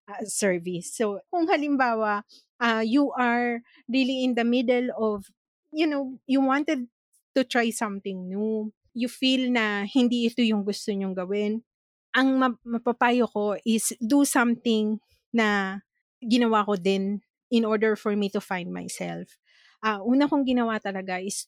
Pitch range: 205-255 Hz